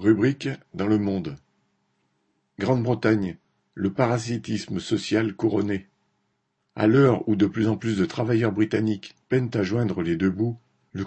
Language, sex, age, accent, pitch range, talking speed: French, male, 50-69, French, 95-115 Hz, 140 wpm